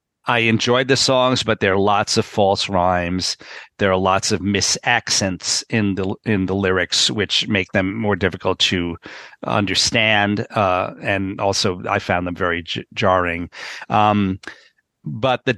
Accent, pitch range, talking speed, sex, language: American, 95-110 Hz, 155 wpm, male, English